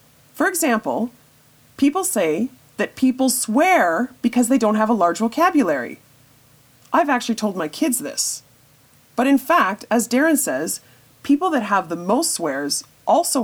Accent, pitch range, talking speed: American, 165-260 Hz, 145 wpm